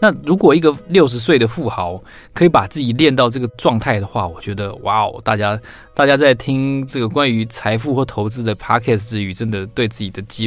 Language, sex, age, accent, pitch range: Chinese, male, 20-39, native, 100-125 Hz